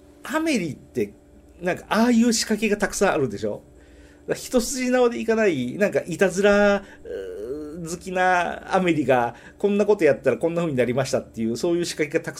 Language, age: Japanese, 40-59